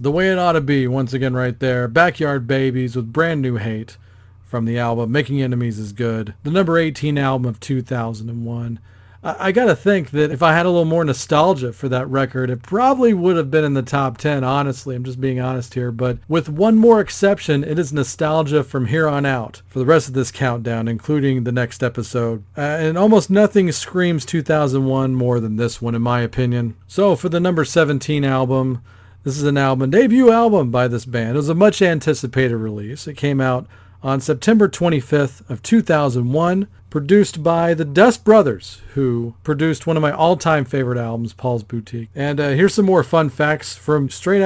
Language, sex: English, male